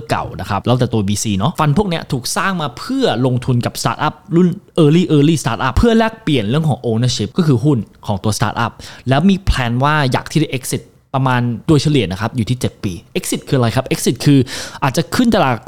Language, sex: Thai, male